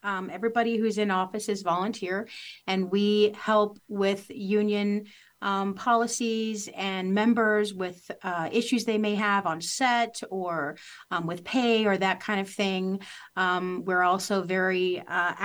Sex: female